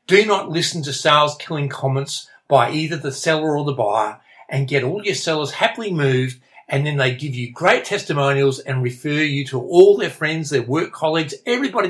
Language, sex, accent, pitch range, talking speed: English, male, Australian, 135-170 Hz, 195 wpm